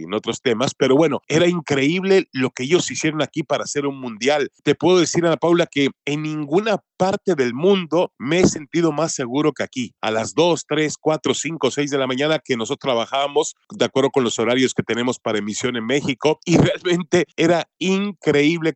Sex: male